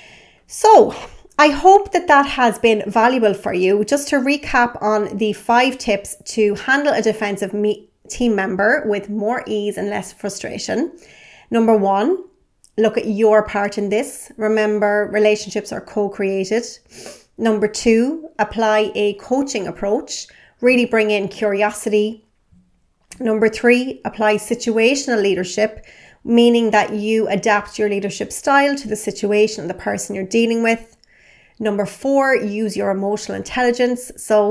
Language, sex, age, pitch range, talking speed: English, female, 30-49, 205-235 Hz, 135 wpm